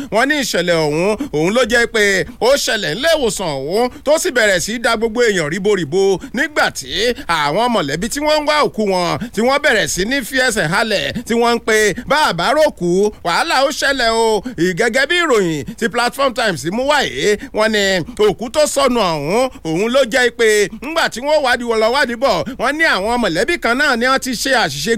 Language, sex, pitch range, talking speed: English, male, 205-285 Hz, 210 wpm